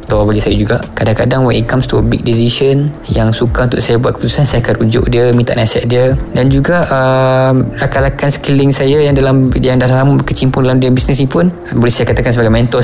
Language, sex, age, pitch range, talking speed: Malay, male, 20-39, 125-155 Hz, 225 wpm